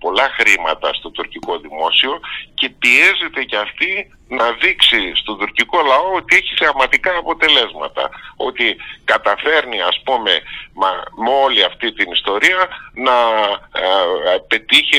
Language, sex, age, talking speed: Greek, male, 50-69, 115 wpm